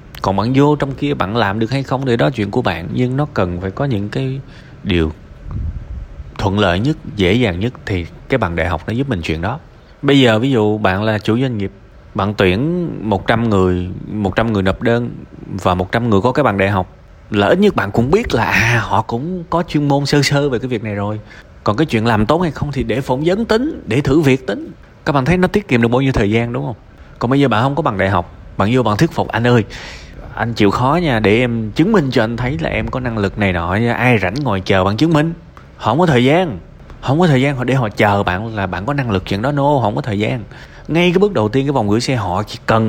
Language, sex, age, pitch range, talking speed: Vietnamese, male, 20-39, 95-135 Hz, 265 wpm